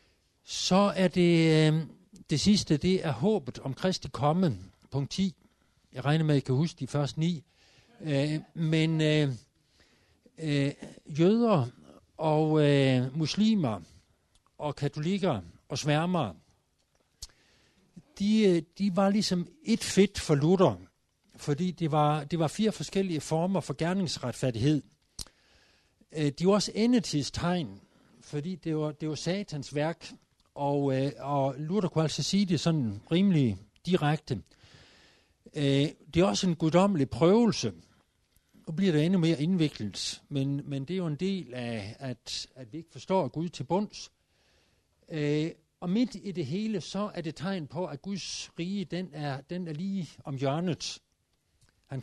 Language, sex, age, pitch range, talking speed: Danish, male, 60-79, 140-180 Hz, 150 wpm